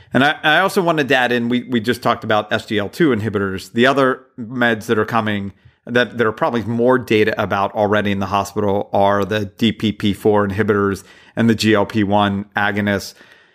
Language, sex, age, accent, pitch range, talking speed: English, male, 40-59, American, 105-120 Hz, 175 wpm